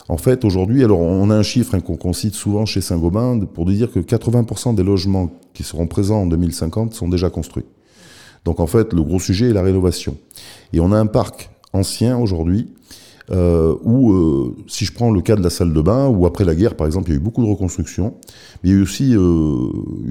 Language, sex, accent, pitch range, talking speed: French, male, French, 85-110 Hz, 225 wpm